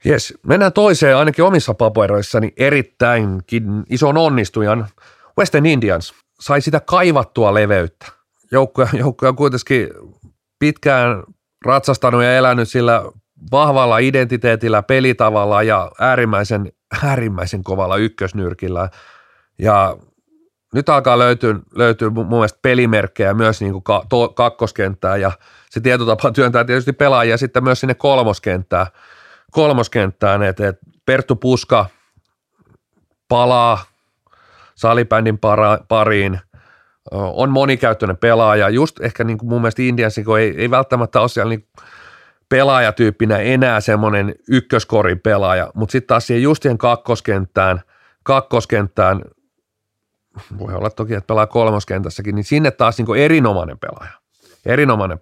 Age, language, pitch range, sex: 30-49, Finnish, 105-130 Hz, male